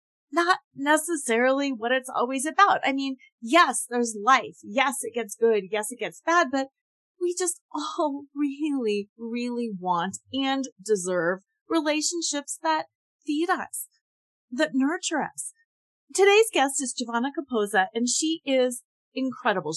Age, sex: 30-49, female